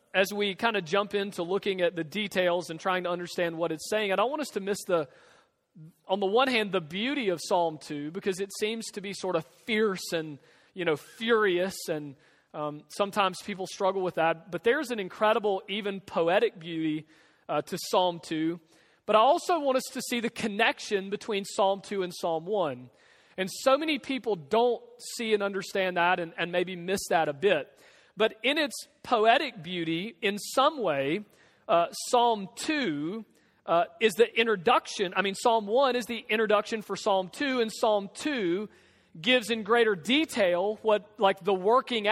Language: English